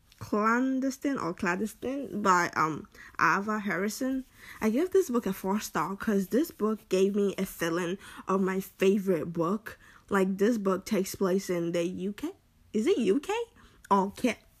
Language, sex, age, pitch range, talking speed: English, female, 10-29, 185-225 Hz, 150 wpm